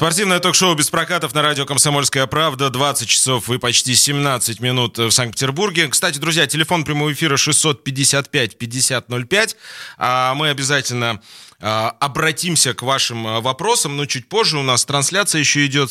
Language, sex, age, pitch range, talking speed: Russian, male, 20-39, 115-150 Hz, 135 wpm